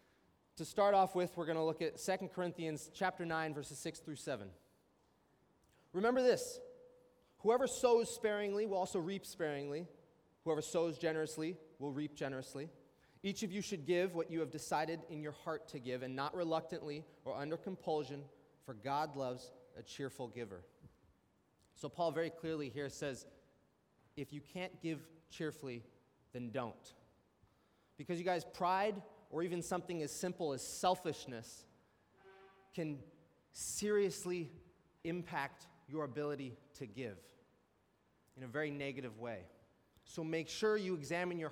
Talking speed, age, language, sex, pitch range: 145 wpm, 30-49, English, male, 140-180 Hz